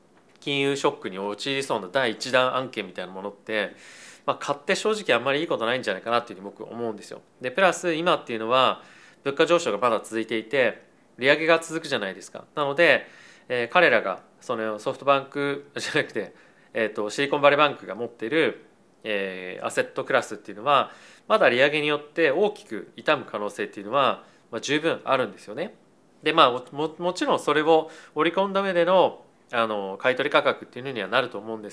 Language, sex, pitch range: Japanese, male, 110-150 Hz